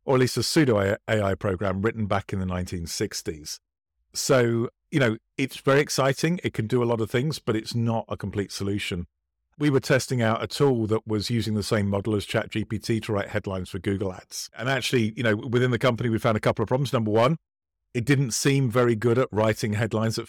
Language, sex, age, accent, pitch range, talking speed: English, male, 40-59, British, 100-125 Hz, 220 wpm